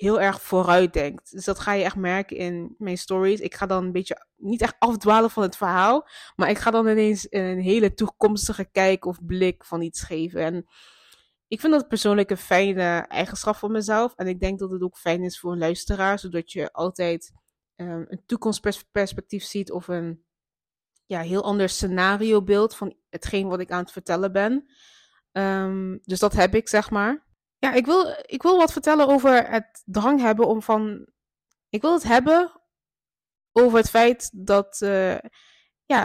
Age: 20-39